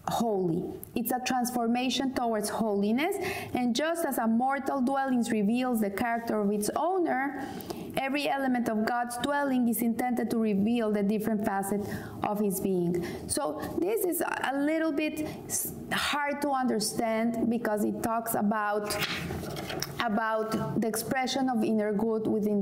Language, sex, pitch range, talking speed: English, female, 215-260 Hz, 140 wpm